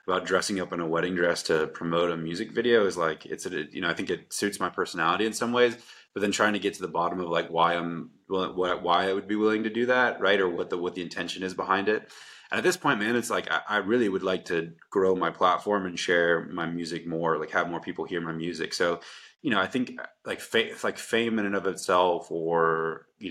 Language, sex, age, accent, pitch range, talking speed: English, male, 20-39, American, 85-100 Hz, 250 wpm